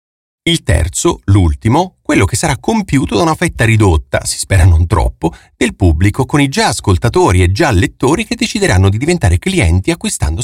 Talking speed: 170 wpm